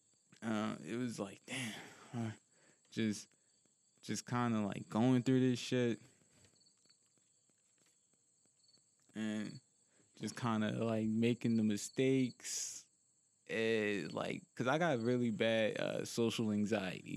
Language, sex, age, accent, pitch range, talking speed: English, male, 20-39, American, 110-135 Hz, 115 wpm